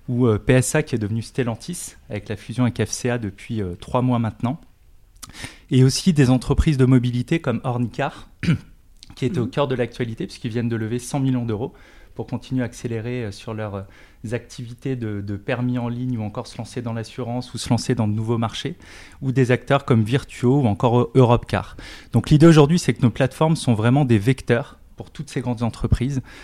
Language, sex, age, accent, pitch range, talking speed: French, male, 20-39, French, 110-130 Hz, 195 wpm